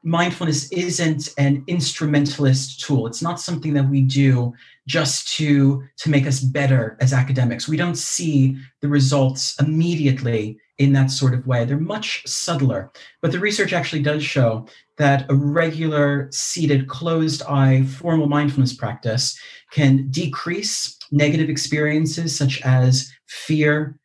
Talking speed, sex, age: 135 wpm, male, 40-59